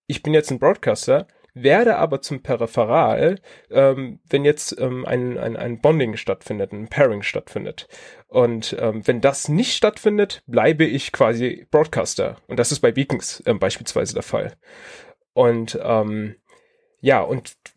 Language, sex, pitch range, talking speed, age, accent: German, male, 130-175 Hz, 150 wpm, 30-49, German